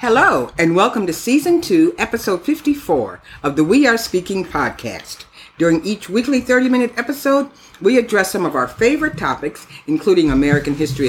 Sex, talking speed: female, 155 wpm